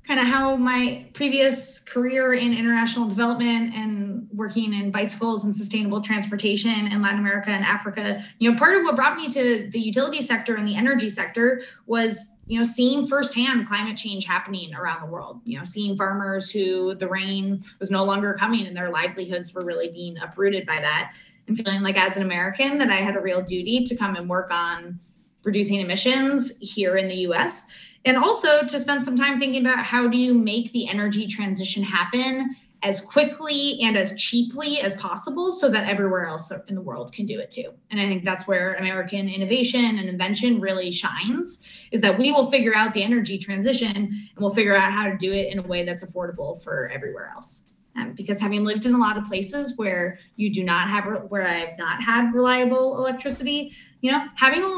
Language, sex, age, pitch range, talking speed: English, female, 20-39, 195-245 Hz, 200 wpm